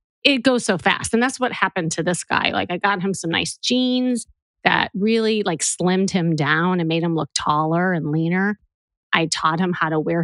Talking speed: 215 wpm